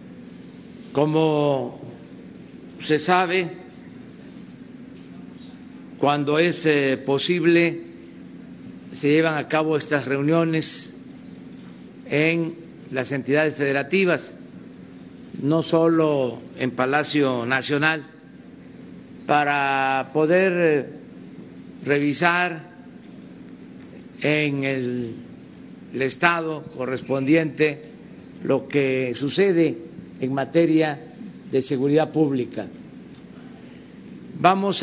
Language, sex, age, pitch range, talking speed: Spanish, male, 50-69, 135-165 Hz, 65 wpm